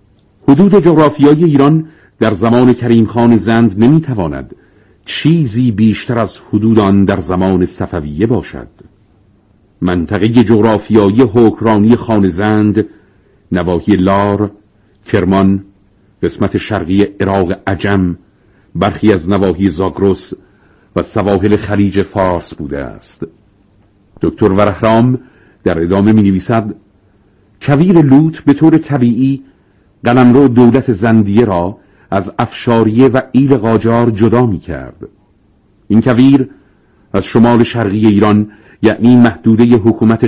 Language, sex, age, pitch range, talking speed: Persian, male, 50-69, 100-115 Hz, 105 wpm